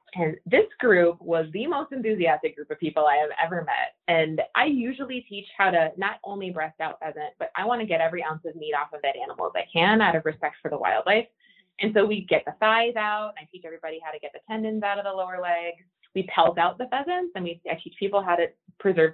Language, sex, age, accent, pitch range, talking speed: English, female, 20-39, American, 160-230 Hz, 250 wpm